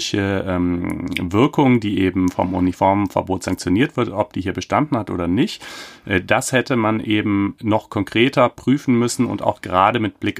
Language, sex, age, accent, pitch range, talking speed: German, male, 30-49, German, 95-115 Hz, 155 wpm